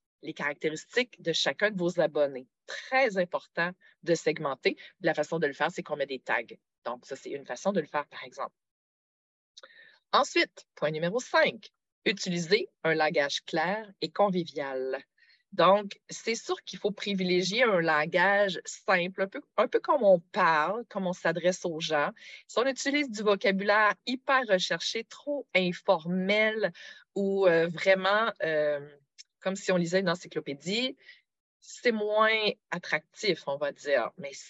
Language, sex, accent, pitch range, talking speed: French, female, Canadian, 160-210 Hz, 155 wpm